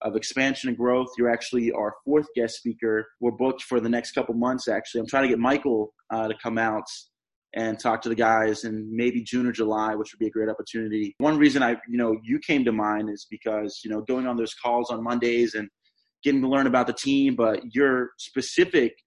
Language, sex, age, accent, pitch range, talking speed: English, male, 20-39, American, 115-130 Hz, 225 wpm